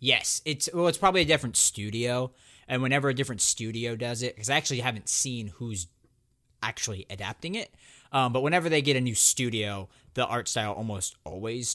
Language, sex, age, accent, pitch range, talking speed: English, male, 20-39, American, 105-130 Hz, 185 wpm